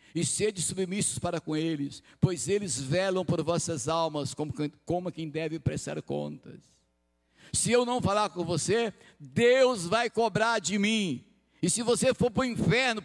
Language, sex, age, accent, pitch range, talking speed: Portuguese, male, 60-79, Brazilian, 135-210 Hz, 165 wpm